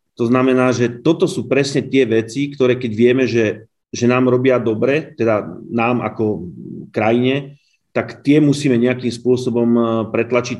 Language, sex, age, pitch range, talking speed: Slovak, male, 30-49, 110-125 Hz, 145 wpm